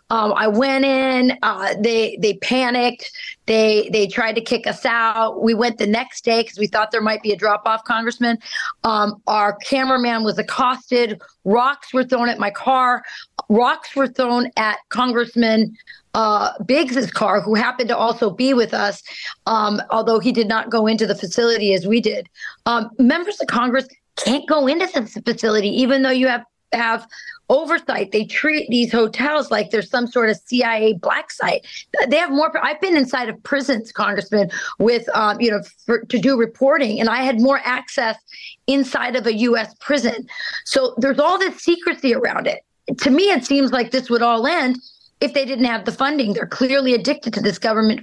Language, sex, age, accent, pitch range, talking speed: English, female, 30-49, American, 220-265 Hz, 185 wpm